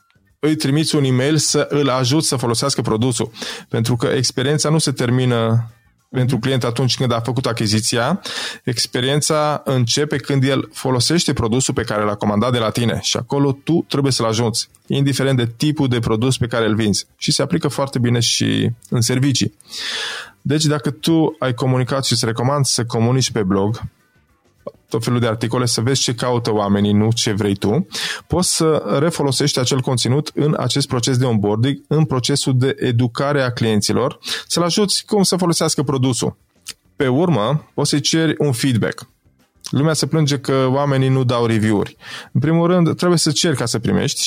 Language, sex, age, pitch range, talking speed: Romanian, male, 20-39, 115-145 Hz, 175 wpm